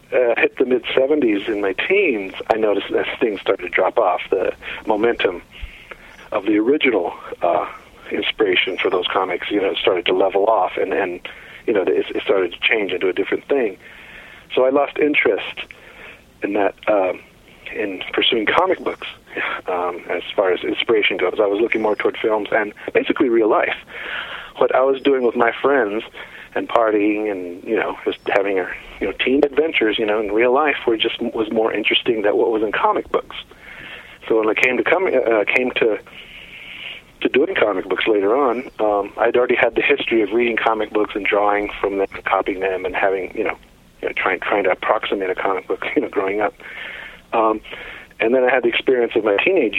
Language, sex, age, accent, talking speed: English, male, 50-69, American, 200 wpm